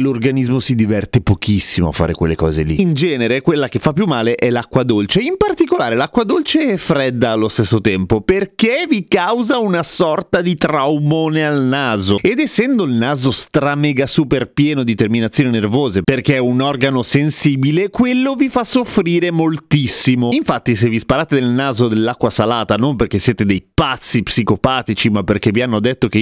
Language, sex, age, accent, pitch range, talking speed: Italian, male, 30-49, native, 115-180 Hz, 175 wpm